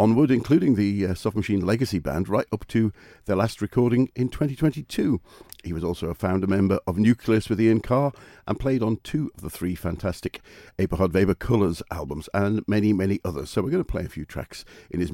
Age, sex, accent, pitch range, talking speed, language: 50-69, male, British, 95-120 Hz, 210 wpm, English